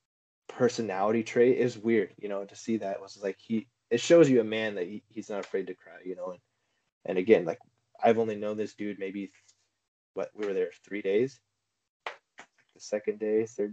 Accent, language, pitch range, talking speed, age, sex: American, English, 100-125 Hz, 195 wpm, 20-39, male